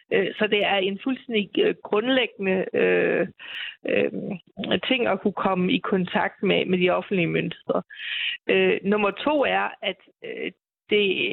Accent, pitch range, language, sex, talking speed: native, 190-250 Hz, Danish, female, 135 wpm